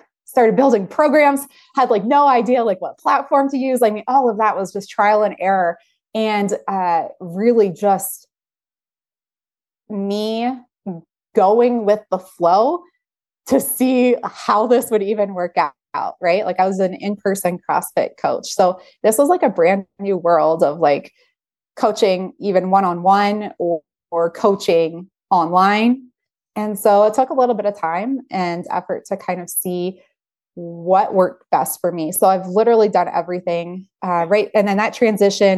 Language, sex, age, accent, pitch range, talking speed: English, female, 20-39, American, 185-245 Hz, 160 wpm